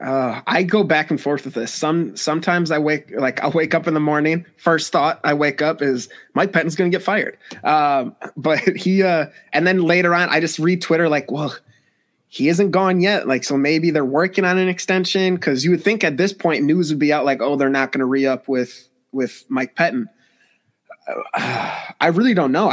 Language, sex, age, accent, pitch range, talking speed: English, male, 20-39, American, 135-165 Hz, 225 wpm